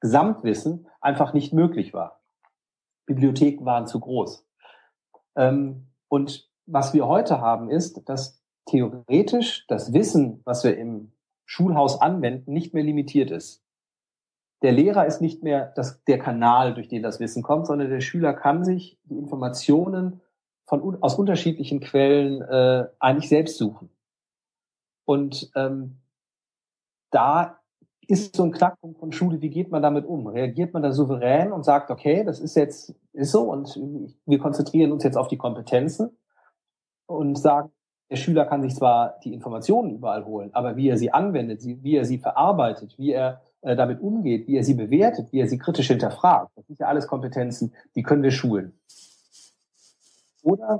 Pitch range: 130-165 Hz